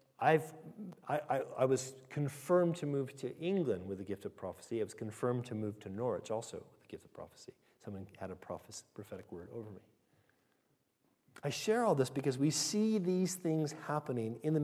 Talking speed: 195 wpm